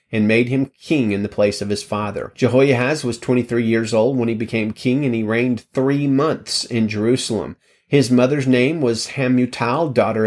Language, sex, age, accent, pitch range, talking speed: English, male, 30-49, American, 110-135 Hz, 185 wpm